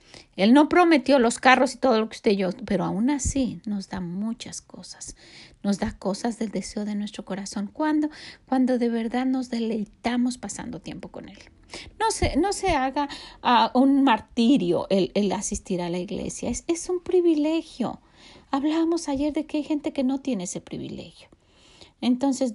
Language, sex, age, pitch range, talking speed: Spanish, female, 40-59, 210-275 Hz, 180 wpm